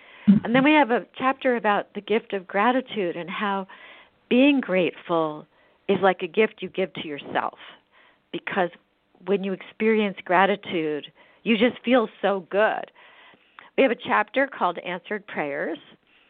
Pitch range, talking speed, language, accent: 165-210 Hz, 145 wpm, English, American